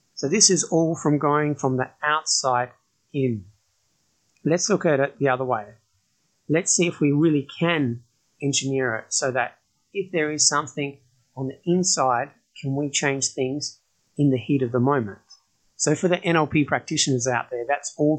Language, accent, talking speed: English, Australian, 175 wpm